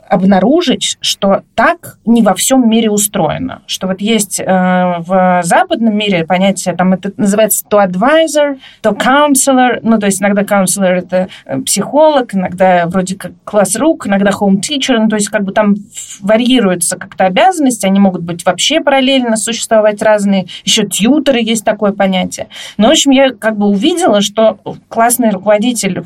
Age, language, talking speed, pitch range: 20-39, Russian, 160 wpm, 185-235 Hz